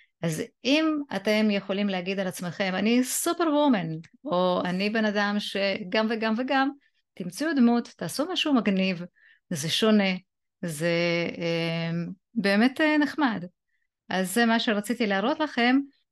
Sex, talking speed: female, 125 wpm